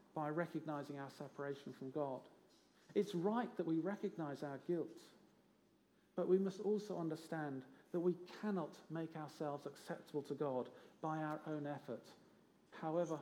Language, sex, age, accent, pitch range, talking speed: English, male, 50-69, British, 150-195 Hz, 140 wpm